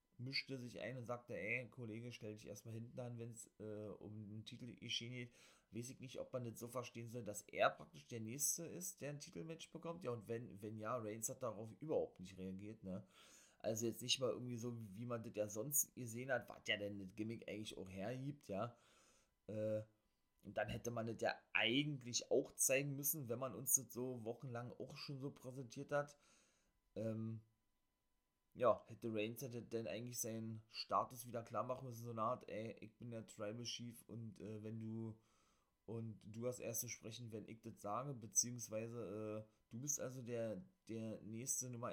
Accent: German